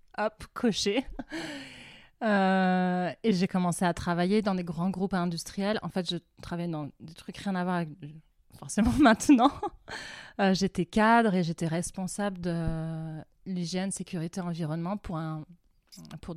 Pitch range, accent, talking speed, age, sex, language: 160-195 Hz, French, 145 wpm, 30-49, female, French